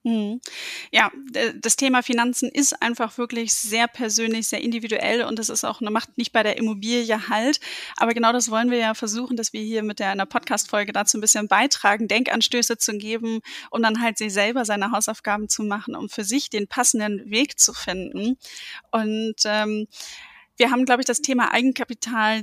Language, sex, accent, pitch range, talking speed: German, female, German, 215-240 Hz, 185 wpm